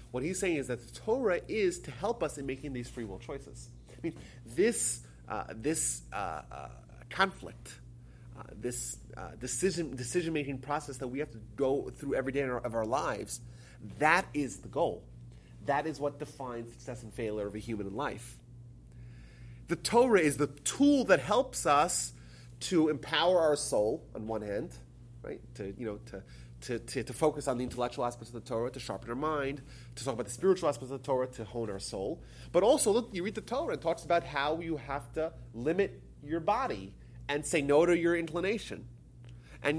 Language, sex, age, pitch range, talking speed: English, male, 30-49, 95-160 Hz, 200 wpm